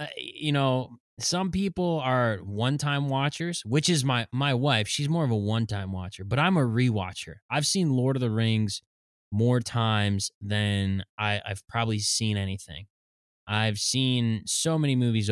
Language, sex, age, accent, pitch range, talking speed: English, male, 20-39, American, 100-125 Hz, 160 wpm